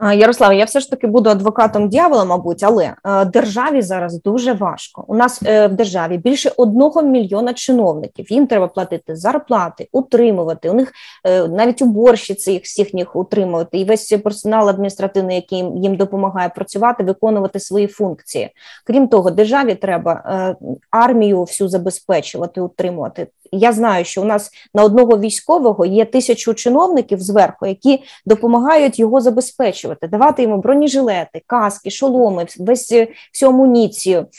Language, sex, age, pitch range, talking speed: Ukrainian, female, 20-39, 200-255 Hz, 140 wpm